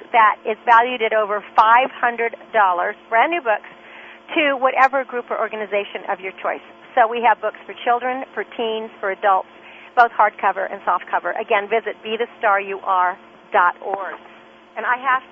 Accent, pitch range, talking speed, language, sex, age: American, 225-290 Hz, 145 wpm, English, female, 40-59